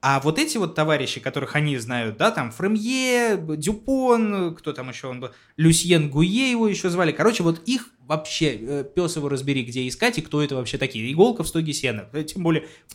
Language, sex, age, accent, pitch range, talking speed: Russian, male, 20-39, native, 120-185 Hz, 200 wpm